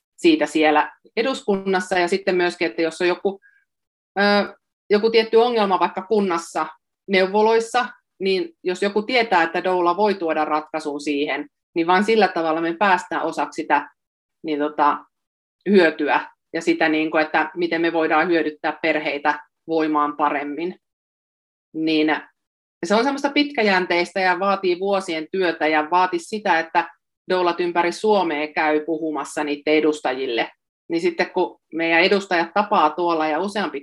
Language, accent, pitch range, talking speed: Finnish, native, 155-195 Hz, 135 wpm